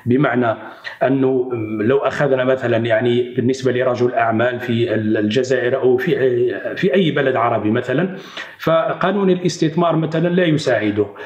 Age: 40-59